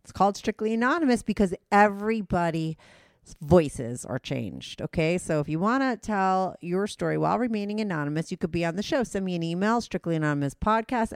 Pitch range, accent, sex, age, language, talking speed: 155-210 Hz, American, female, 40-59, English, 170 wpm